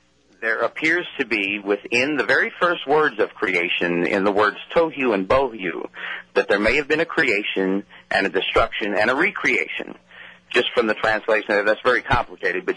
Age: 40-59